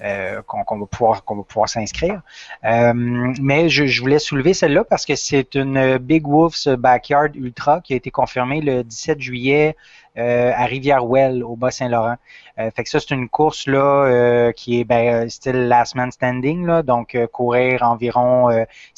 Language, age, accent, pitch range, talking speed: French, 30-49, Canadian, 115-135 Hz, 185 wpm